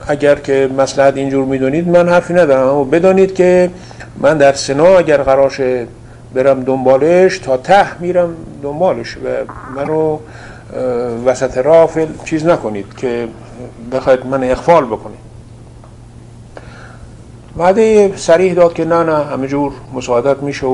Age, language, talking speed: 50-69, Persian, 125 wpm